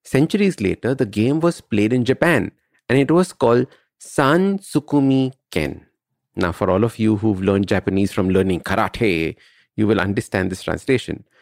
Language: English